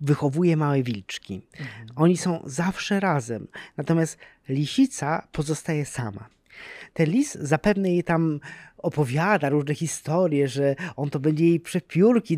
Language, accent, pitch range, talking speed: Polish, native, 140-185 Hz, 120 wpm